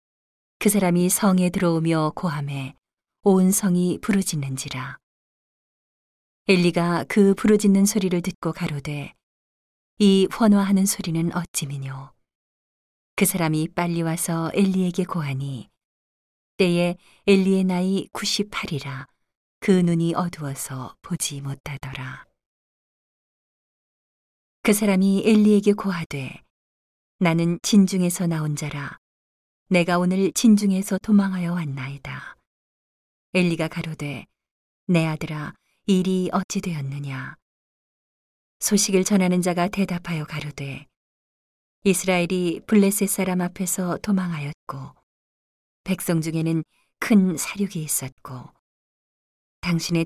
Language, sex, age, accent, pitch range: Korean, female, 40-59, native, 145-190 Hz